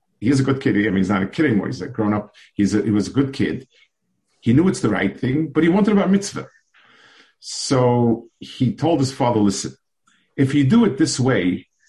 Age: 50-69